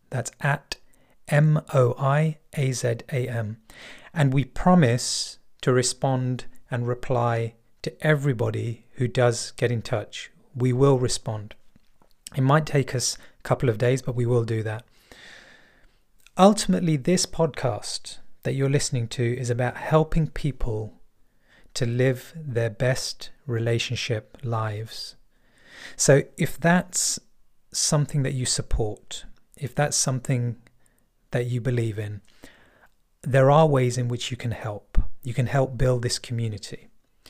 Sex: male